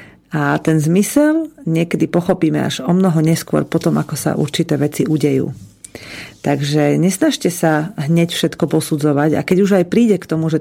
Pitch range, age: 150-175 Hz, 40-59